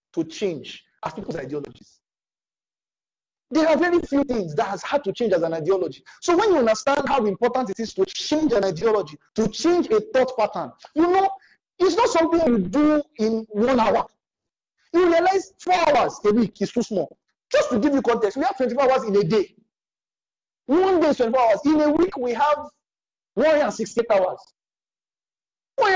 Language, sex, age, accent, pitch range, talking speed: English, male, 50-69, Nigerian, 210-310 Hz, 185 wpm